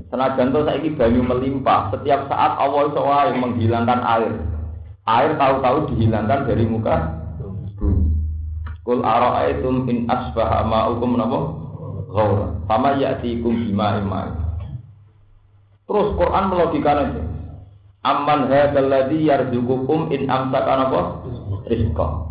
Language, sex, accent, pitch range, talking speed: Indonesian, male, native, 100-125 Hz, 110 wpm